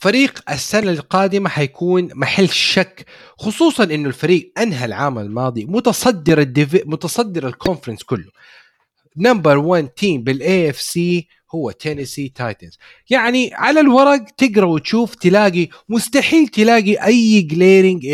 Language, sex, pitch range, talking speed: Arabic, male, 145-225 Hz, 120 wpm